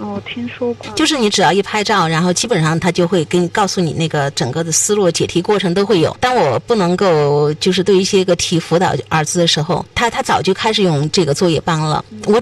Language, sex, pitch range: Chinese, female, 180-260 Hz